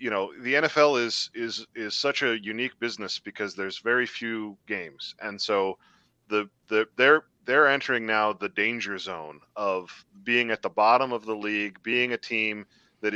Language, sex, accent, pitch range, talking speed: English, male, American, 105-125 Hz, 180 wpm